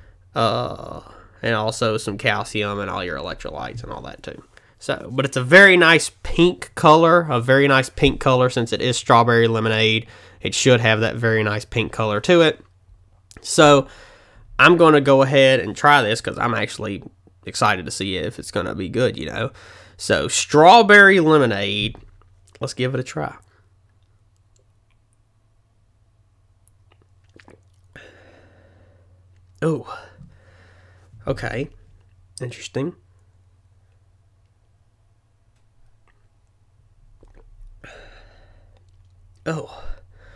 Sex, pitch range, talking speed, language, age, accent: male, 95-115 Hz, 115 wpm, English, 20-39, American